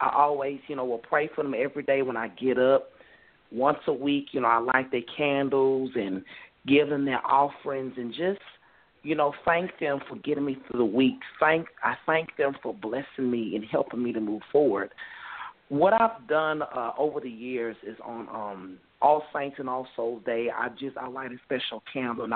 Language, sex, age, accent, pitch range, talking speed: English, male, 40-59, American, 130-170 Hz, 205 wpm